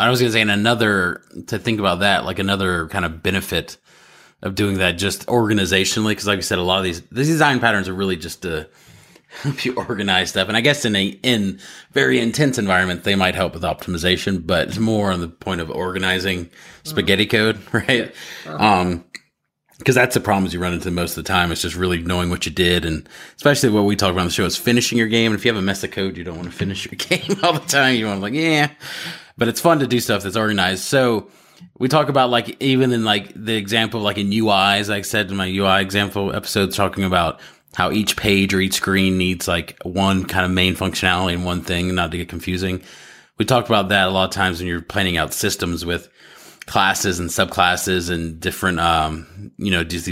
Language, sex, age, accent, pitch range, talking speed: English, male, 30-49, American, 90-110 Hz, 230 wpm